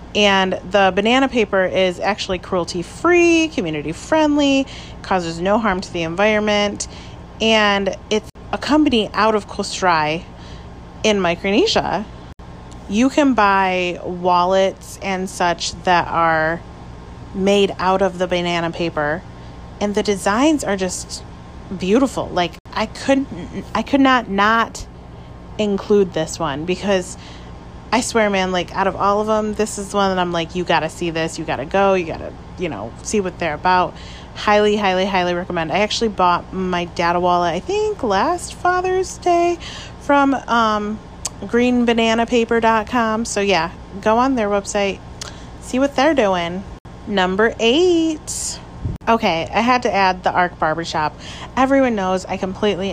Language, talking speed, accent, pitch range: English, 145 wpm, American, 175-220 Hz